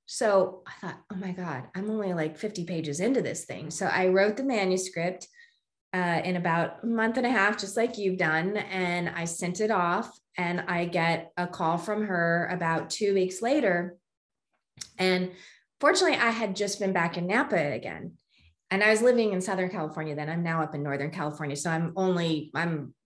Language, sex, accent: English, female, American